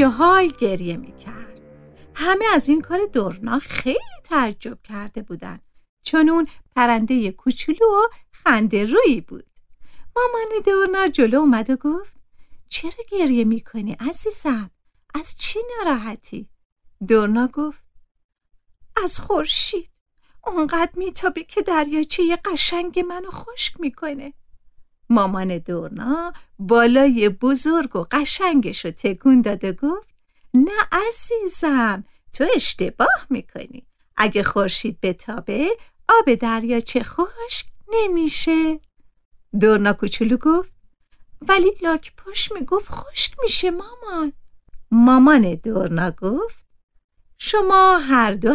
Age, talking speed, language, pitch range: 50-69, 110 wpm, Persian, 225-365 Hz